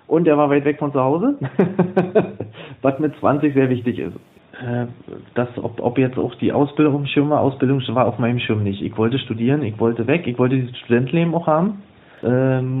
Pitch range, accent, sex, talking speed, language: 120-150 Hz, German, male, 205 wpm, German